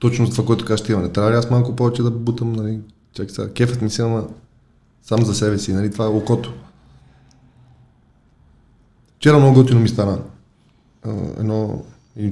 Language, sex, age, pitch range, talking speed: Bulgarian, male, 20-39, 105-120 Hz, 175 wpm